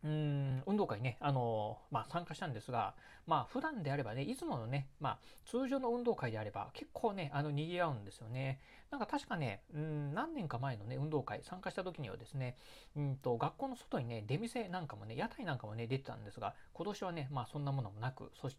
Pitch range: 115-155 Hz